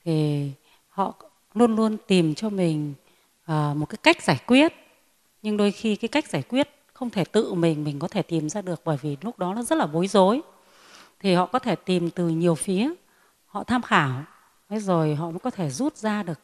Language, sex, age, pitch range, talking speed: Vietnamese, female, 30-49, 165-230 Hz, 215 wpm